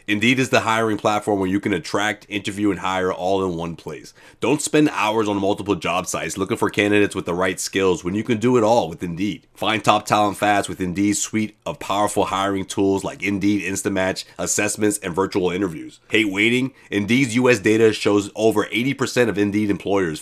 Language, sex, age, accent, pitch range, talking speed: English, male, 30-49, American, 100-120 Hz, 200 wpm